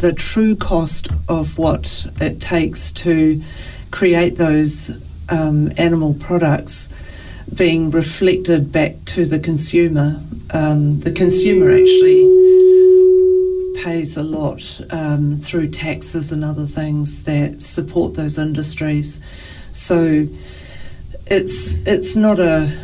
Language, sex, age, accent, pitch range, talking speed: Filipino, female, 40-59, Australian, 145-170 Hz, 110 wpm